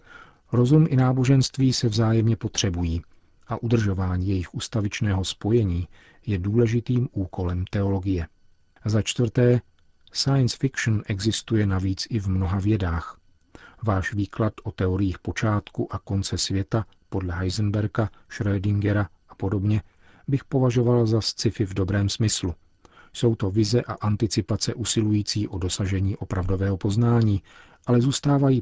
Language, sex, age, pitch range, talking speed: Czech, male, 40-59, 95-110 Hz, 120 wpm